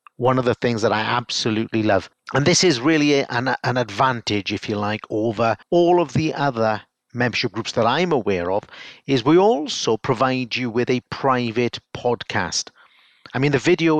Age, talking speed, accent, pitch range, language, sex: 50-69, 180 wpm, British, 115-160 Hz, English, male